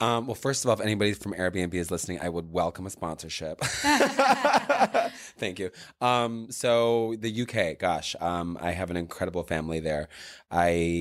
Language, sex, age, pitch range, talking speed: English, male, 20-39, 85-100 Hz, 170 wpm